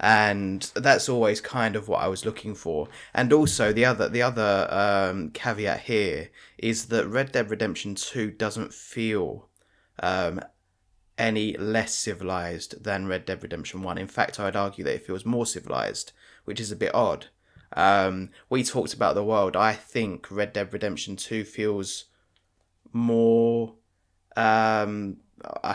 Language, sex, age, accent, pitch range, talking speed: English, male, 20-39, British, 95-110 Hz, 150 wpm